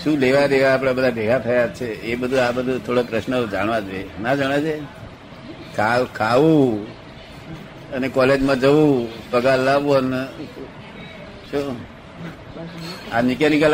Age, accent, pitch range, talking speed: 50-69, native, 115-145 Hz, 85 wpm